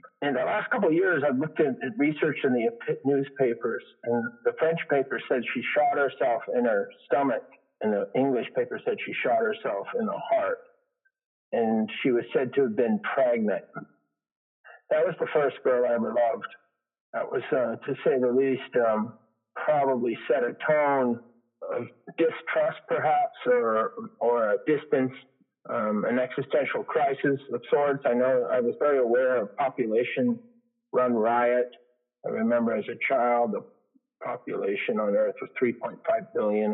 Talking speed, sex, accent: 160 wpm, male, American